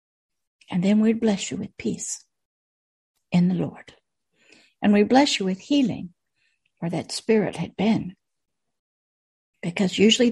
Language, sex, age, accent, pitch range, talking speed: English, female, 60-79, American, 200-255 Hz, 135 wpm